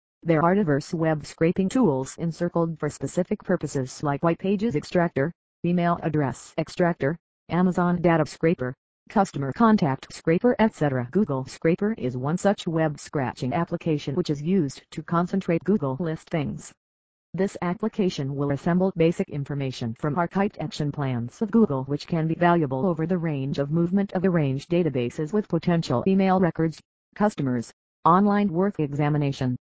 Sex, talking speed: female, 145 wpm